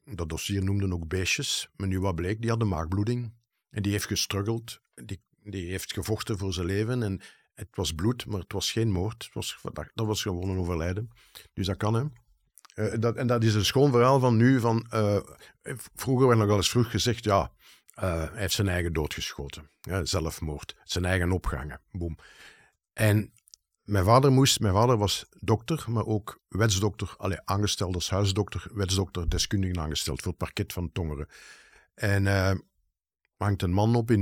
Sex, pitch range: male, 90-110 Hz